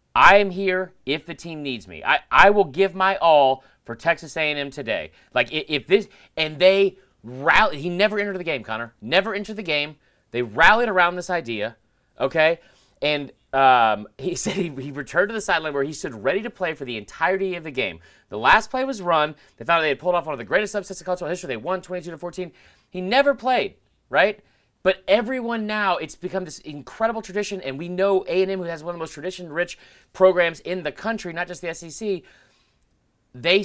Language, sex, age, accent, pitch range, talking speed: English, male, 30-49, American, 150-195 Hz, 210 wpm